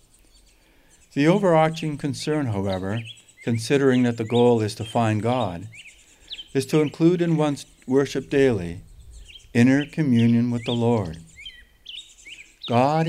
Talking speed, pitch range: 115 wpm, 95-140 Hz